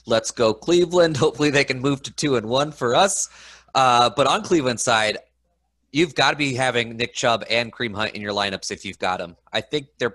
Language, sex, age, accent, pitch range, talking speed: English, male, 30-49, American, 100-130 Hz, 225 wpm